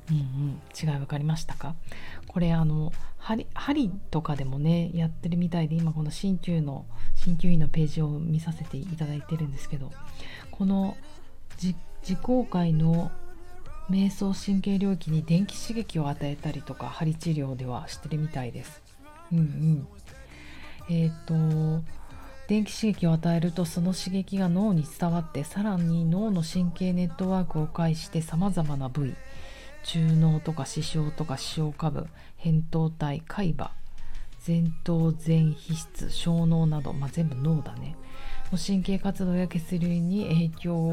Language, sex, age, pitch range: Japanese, female, 40-59, 150-175 Hz